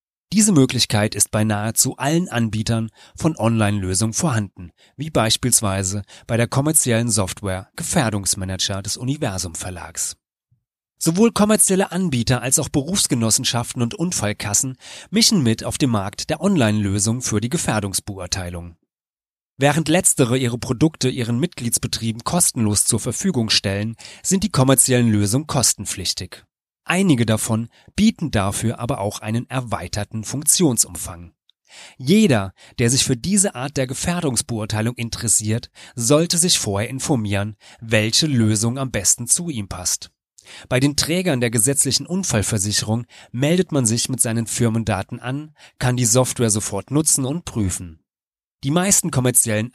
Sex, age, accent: male, 30-49, German